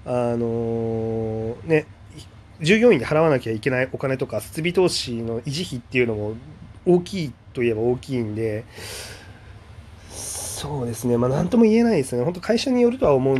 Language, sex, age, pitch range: Japanese, male, 30-49, 105-145 Hz